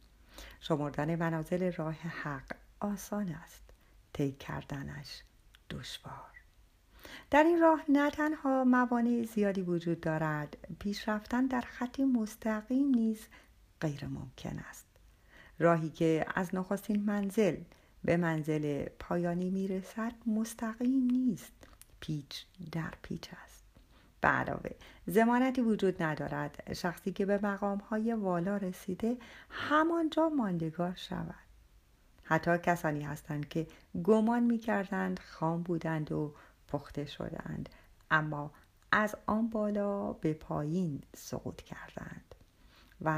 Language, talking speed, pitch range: Persian, 105 wpm, 160-225 Hz